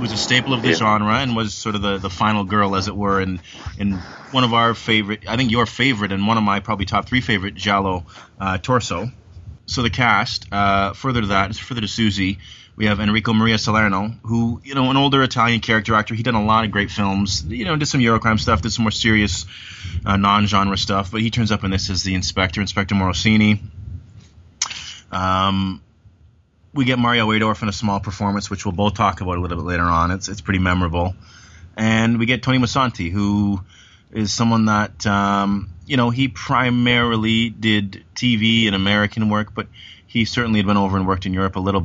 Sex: male